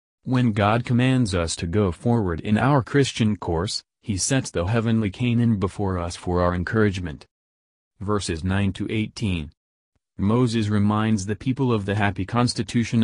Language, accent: English, American